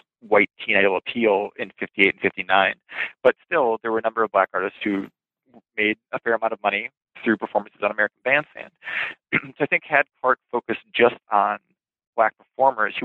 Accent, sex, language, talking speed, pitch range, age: American, male, English, 185 wpm, 105-125 Hz, 20-39